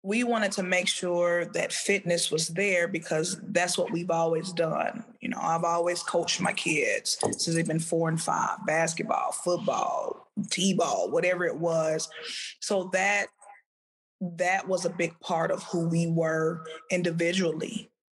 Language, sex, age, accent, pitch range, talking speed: English, female, 20-39, American, 165-190 Hz, 150 wpm